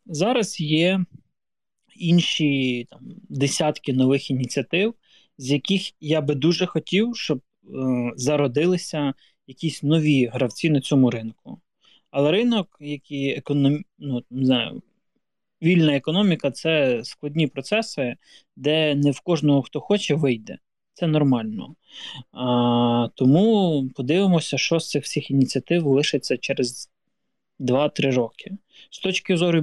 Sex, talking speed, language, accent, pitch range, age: male, 115 wpm, Ukrainian, native, 130-165 Hz, 20-39